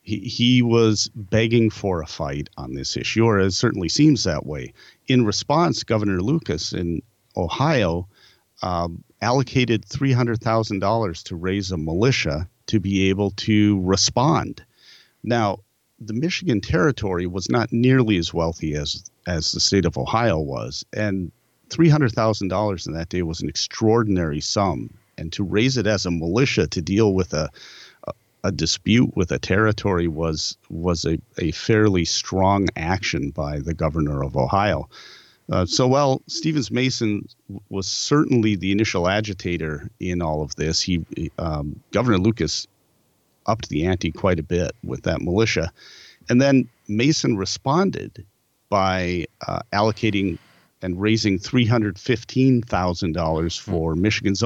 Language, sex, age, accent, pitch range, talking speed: English, male, 40-59, American, 85-115 Hz, 140 wpm